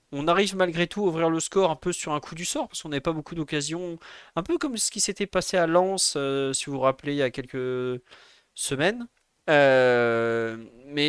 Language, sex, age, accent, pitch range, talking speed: French, male, 30-49, French, 140-185 Hz, 225 wpm